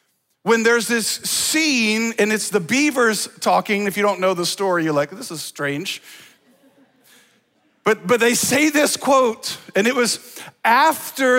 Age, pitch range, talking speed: 40-59, 195-260 Hz, 160 wpm